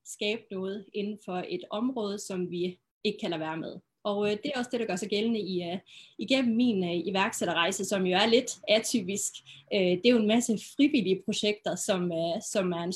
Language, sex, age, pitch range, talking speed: Danish, female, 20-39, 185-225 Hz, 185 wpm